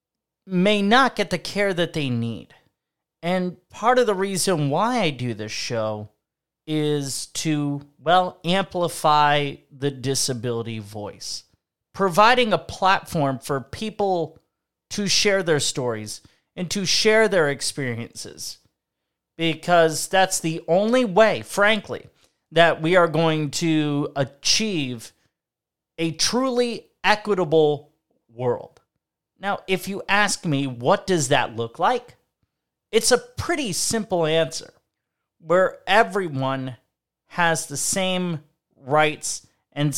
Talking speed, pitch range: 115 wpm, 145-190 Hz